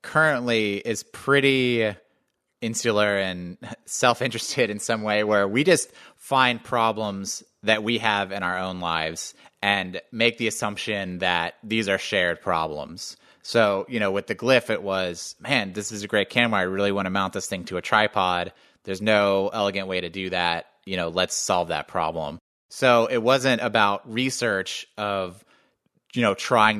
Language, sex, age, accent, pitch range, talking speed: English, male, 30-49, American, 95-115 Hz, 170 wpm